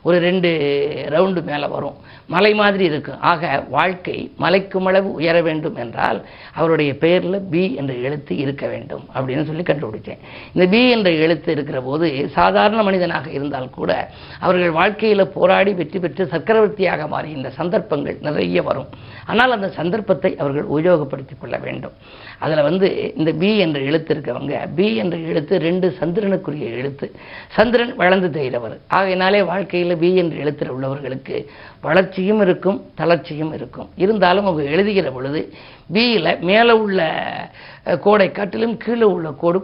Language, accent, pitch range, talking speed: Tamil, native, 150-190 Hz, 130 wpm